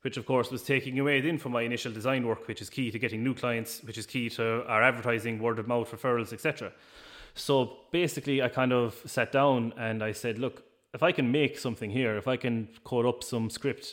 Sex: male